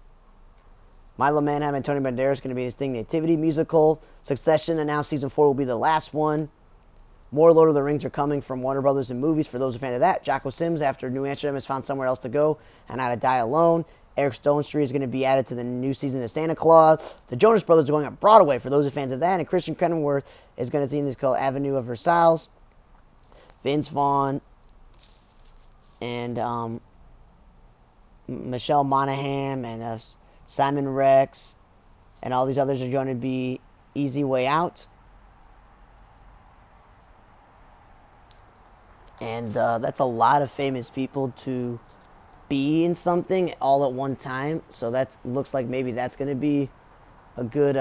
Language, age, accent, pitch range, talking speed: English, 20-39, American, 125-145 Hz, 185 wpm